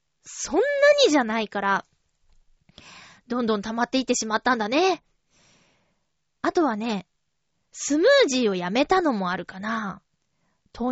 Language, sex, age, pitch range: Japanese, female, 20-39, 215-320 Hz